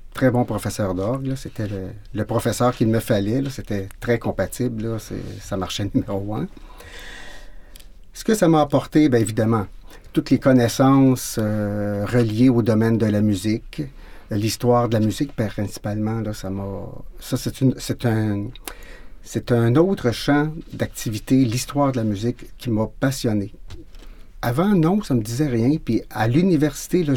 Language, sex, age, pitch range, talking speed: French, male, 50-69, 105-135 Hz, 165 wpm